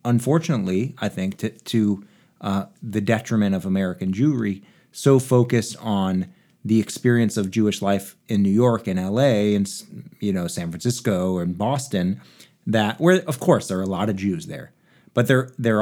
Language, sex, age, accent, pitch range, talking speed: English, male, 30-49, American, 95-125 Hz, 170 wpm